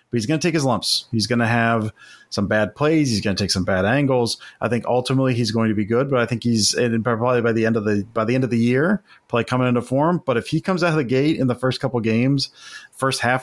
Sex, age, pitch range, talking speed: male, 30-49, 110-130 Hz, 290 wpm